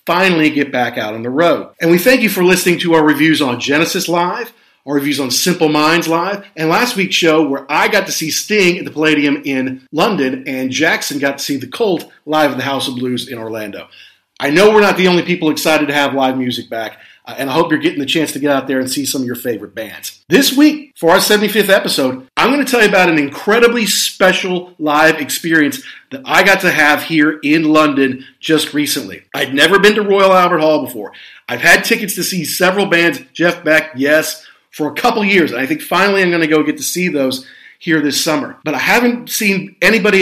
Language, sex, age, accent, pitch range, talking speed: English, male, 40-59, American, 150-215 Hz, 230 wpm